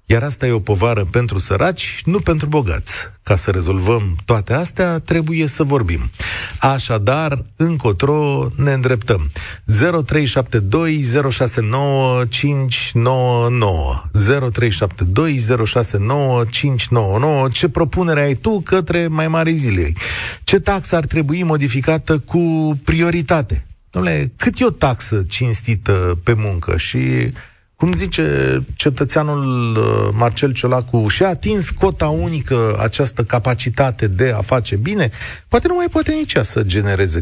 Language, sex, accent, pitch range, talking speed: Romanian, male, native, 100-145 Hz, 115 wpm